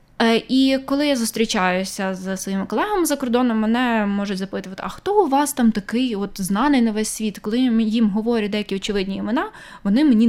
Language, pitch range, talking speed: Ukrainian, 190-230 Hz, 180 wpm